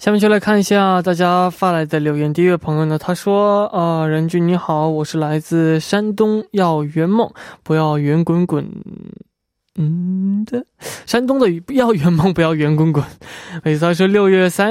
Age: 20-39